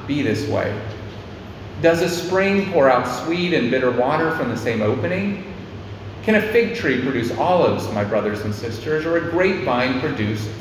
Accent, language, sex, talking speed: American, English, male, 170 wpm